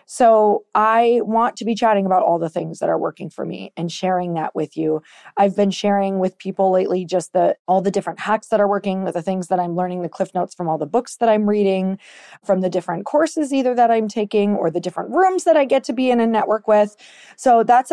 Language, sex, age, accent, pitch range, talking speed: English, female, 30-49, American, 180-230 Hz, 245 wpm